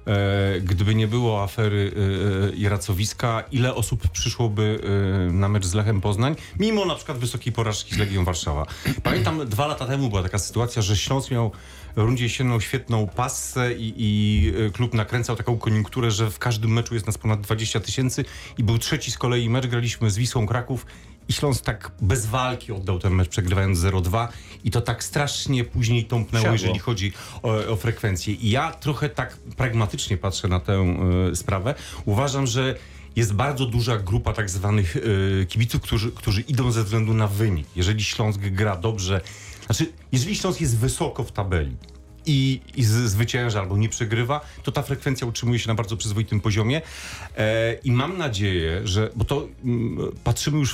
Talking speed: 165 wpm